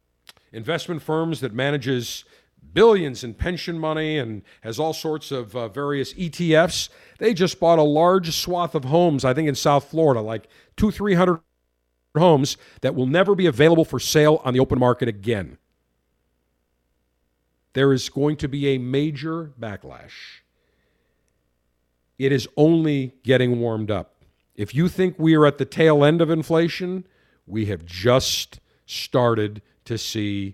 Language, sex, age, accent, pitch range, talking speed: English, male, 50-69, American, 110-170 Hz, 150 wpm